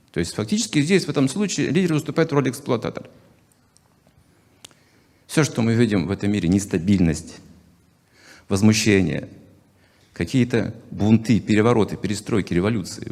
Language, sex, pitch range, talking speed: Russian, male, 95-135 Hz, 120 wpm